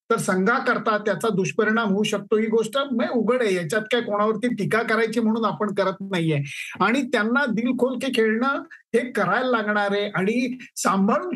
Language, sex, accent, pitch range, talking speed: Marathi, male, native, 185-230 Hz, 155 wpm